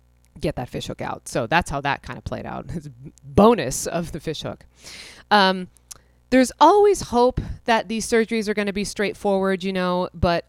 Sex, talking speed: female, 190 wpm